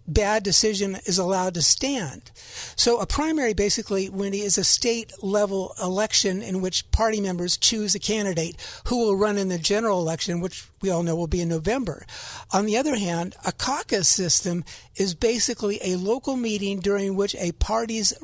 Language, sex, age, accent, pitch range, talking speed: English, male, 50-69, American, 190-235 Hz, 175 wpm